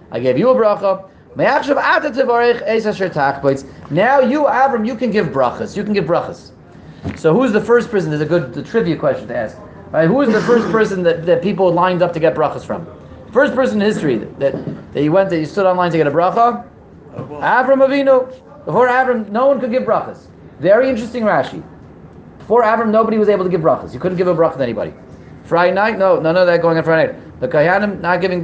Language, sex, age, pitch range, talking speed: English, male, 30-49, 175-230 Hz, 215 wpm